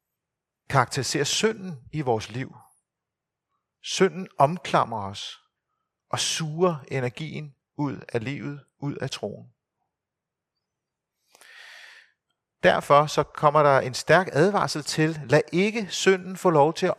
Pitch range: 125-165 Hz